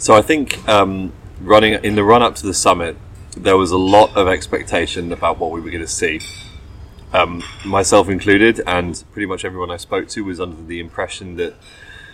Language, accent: English, British